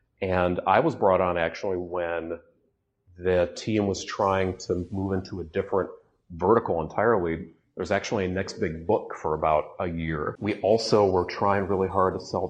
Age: 40-59